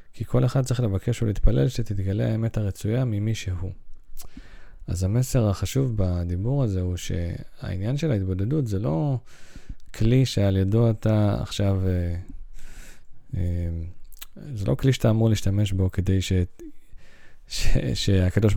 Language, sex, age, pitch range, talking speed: Hebrew, male, 20-39, 95-120 Hz, 115 wpm